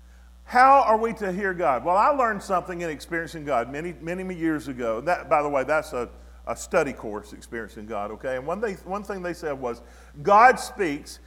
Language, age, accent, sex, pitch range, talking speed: English, 40-59, American, male, 160-220 Hz, 215 wpm